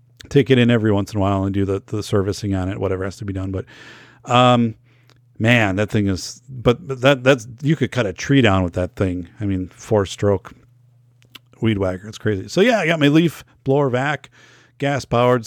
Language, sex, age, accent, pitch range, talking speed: English, male, 40-59, American, 100-125 Hz, 215 wpm